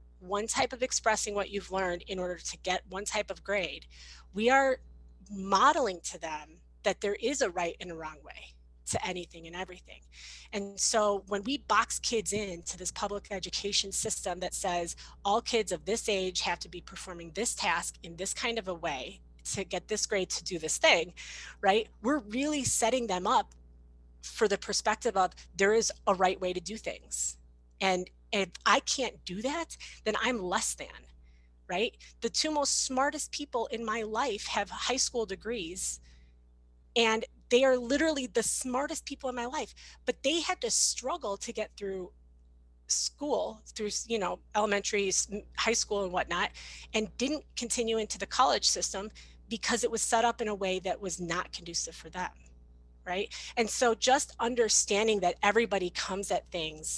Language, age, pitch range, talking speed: English, 30-49, 175-230 Hz, 180 wpm